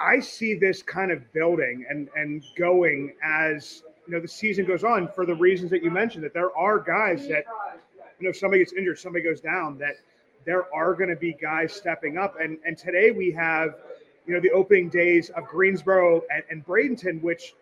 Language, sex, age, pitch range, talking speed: English, male, 30-49, 160-220 Hz, 205 wpm